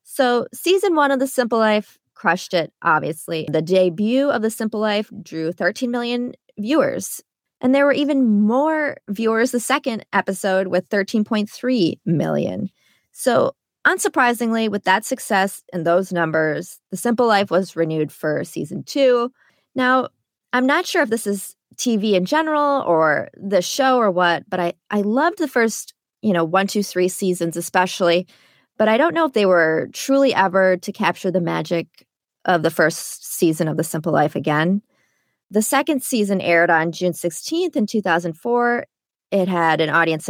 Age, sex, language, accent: 20-39, female, English, American